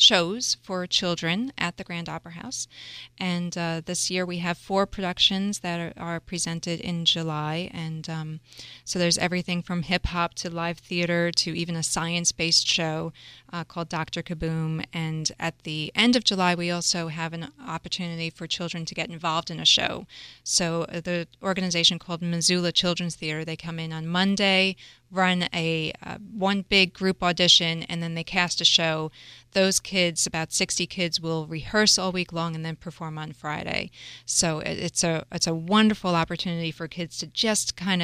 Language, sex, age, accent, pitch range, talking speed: English, female, 30-49, American, 160-180 Hz, 175 wpm